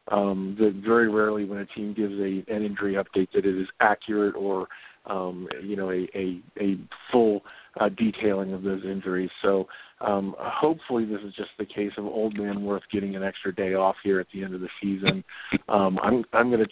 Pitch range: 100-110 Hz